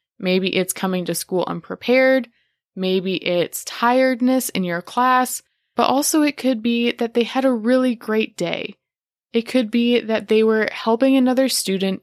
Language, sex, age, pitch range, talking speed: English, female, 20-39, 190-250 Hz, 165 wpm